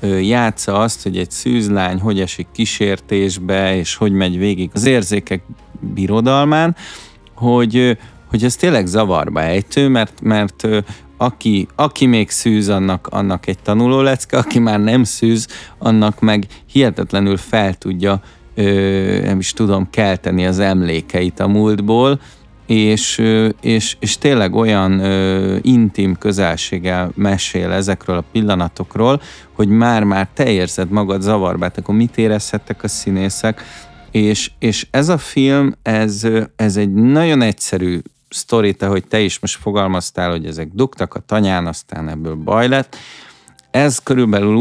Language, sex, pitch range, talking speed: Hungarian, male, 95-115 Hz, 135 wpm